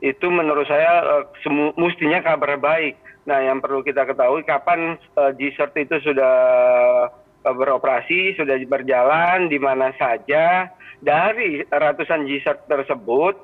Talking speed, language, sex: 130 wpm, Indonesian, male